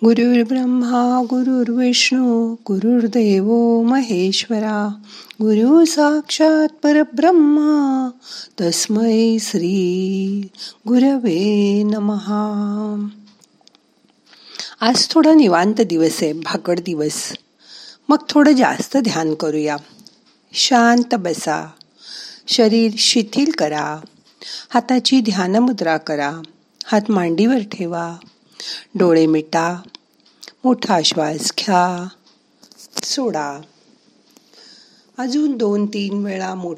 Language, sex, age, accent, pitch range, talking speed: Marathi, female, 50-69, native, 170-240 Hz, 65 wpm